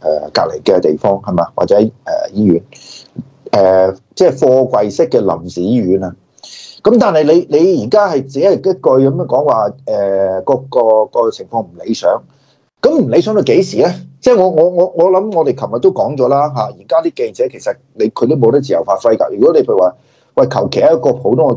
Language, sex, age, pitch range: Chinese, male, 30-49, 135-225 Hz